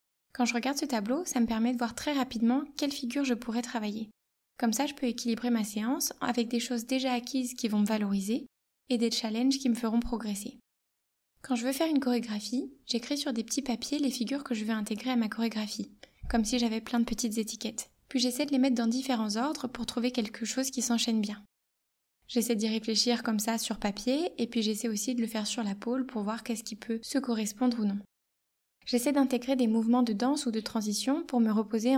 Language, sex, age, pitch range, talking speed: French, female, 20-39, 225-255 Hz, 225 wpm